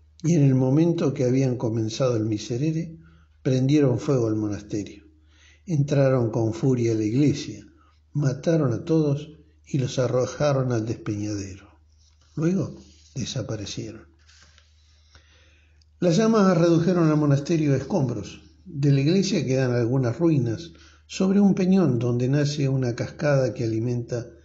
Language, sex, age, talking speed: Spanish, male, 60-79, 125 wpm